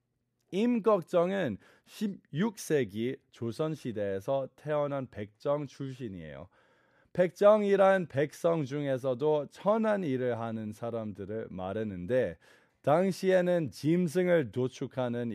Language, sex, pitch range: Korean, male, 120-185 Hz